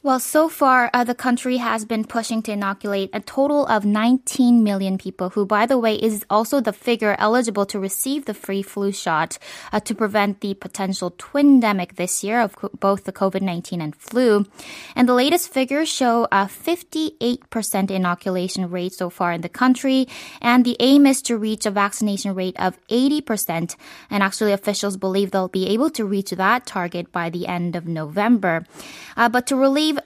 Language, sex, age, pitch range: Korean, female, 20-39, 195-250 Hz